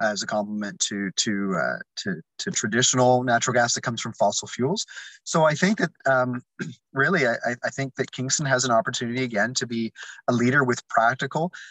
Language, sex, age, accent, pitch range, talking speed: English, male, 30-49, American, 115-145 Hz, 190 wpm